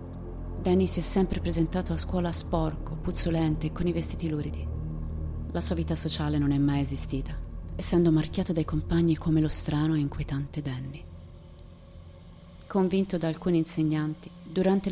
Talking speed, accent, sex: 145 wpm, native, female